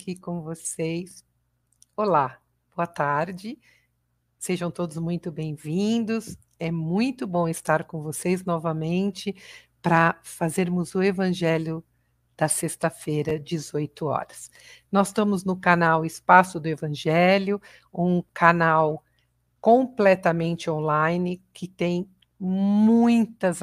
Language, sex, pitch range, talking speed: Portuguese, female, 160-190 Hz, 100 wpm